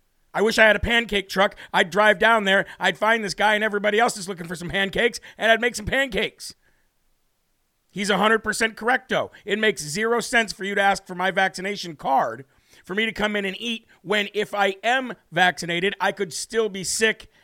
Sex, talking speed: male, 205 wpm